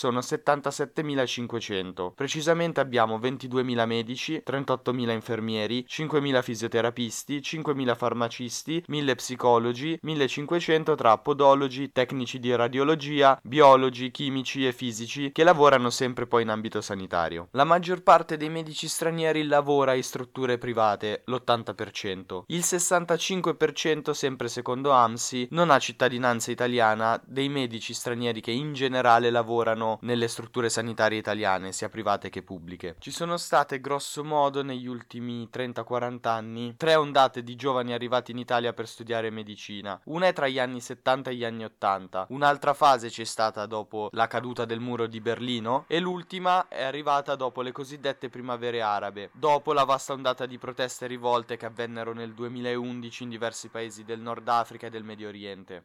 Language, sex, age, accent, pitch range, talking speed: Italian, male, 20-39, native, 115-140 Hz, 145 wpm